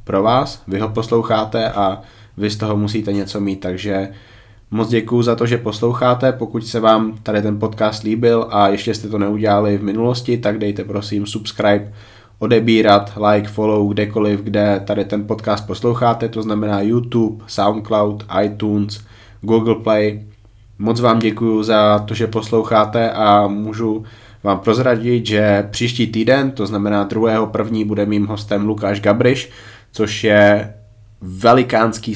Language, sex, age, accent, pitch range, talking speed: Czech, male, 20-39, native, 105-115 Hz, 145 wpm